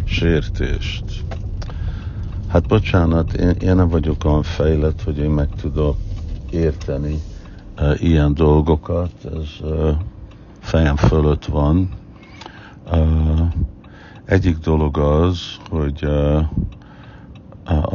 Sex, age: male, 60-79